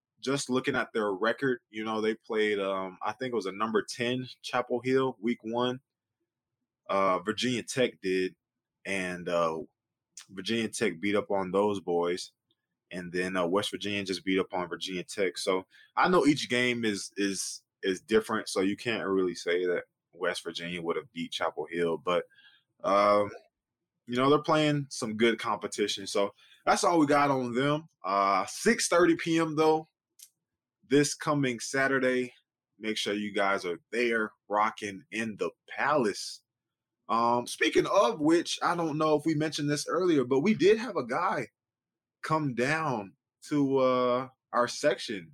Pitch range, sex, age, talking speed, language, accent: 100-140 Hz, male, 20-39, 165 wpm, English, American